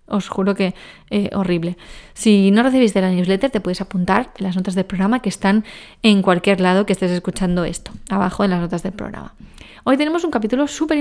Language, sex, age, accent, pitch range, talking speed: Spanish, female, 20-39, Spanish, 190-250 Hz, 205 wpm